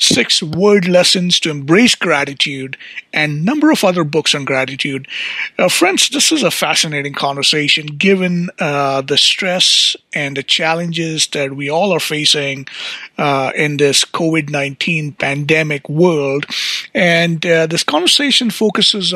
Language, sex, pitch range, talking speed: English, male, 145-185 Hz, 140 wpm